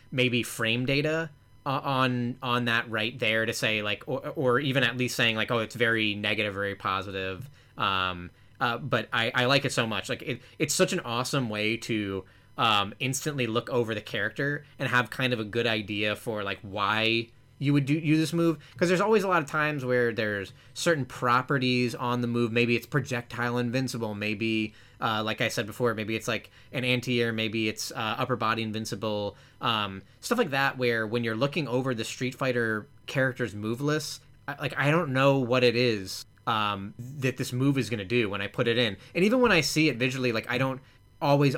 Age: 20-39